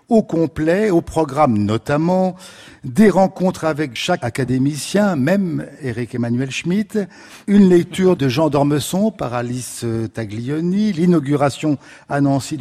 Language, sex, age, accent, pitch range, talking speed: French, male, 50-69, French, 125-175 Hz, 115 wpm